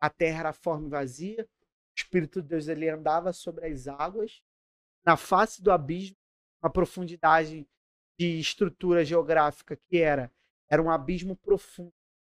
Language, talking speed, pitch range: Portuguese, 145 wpm, 150-185 Hz